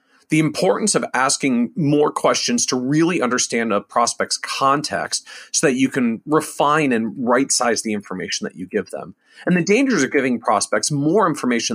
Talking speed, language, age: 170 wpm, English, 40-59